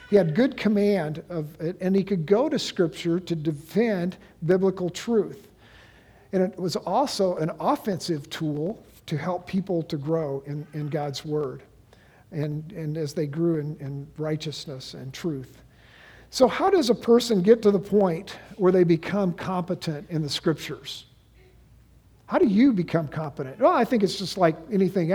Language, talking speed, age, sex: English, 165 wpm, 50-69, male